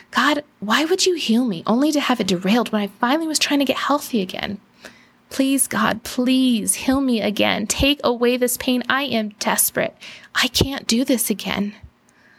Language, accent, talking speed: English, American, 185 wpm